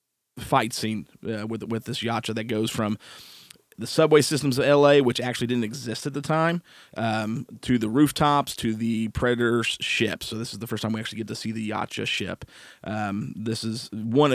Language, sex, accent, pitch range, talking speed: English, male, American, 110-130 Hz, 200 wpm